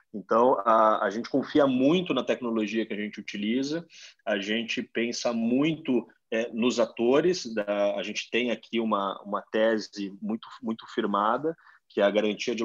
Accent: Brazilian